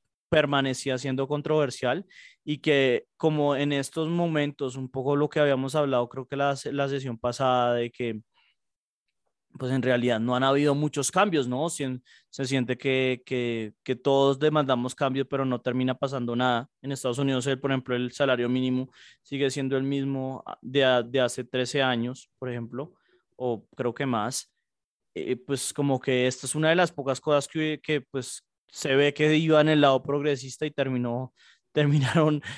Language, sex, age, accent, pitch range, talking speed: Spanish, male, 20-39, Colombian, 130-150 Hz, 175 wpm